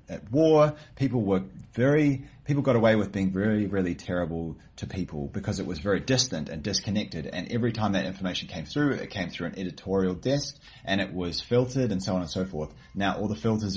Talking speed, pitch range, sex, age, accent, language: 215 wpm, 85-115 Hz, male, 30-49, Australian, English